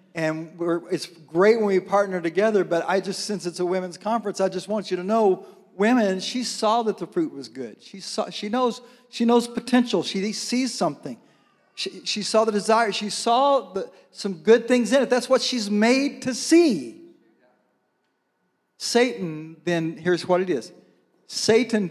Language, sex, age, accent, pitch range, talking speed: English, male, 40-59, American, 165-220 Hz, 180 wpm